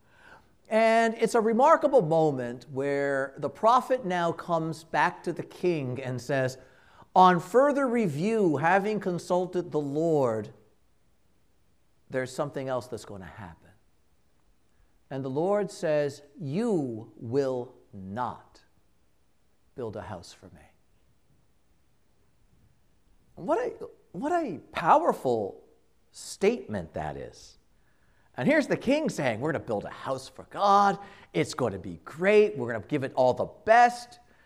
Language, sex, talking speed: English, male, 130 wpm